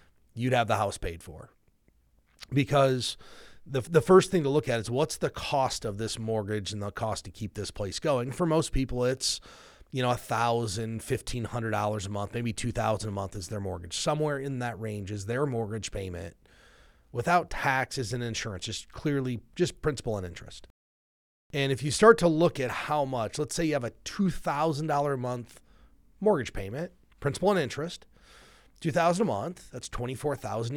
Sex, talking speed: male, 185 wpm